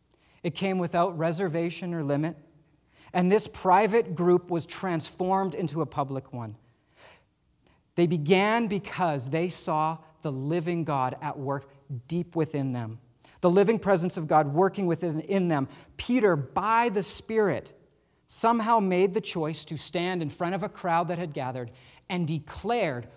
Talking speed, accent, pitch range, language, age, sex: 150 wpm, American, 135-185 Hz, English, 40-59, male